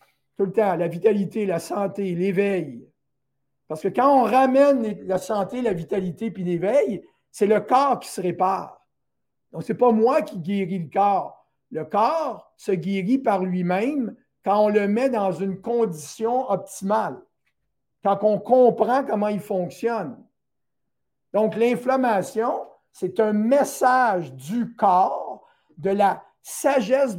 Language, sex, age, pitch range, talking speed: French, male, 50-69, 195-250 Hz, 140 wpm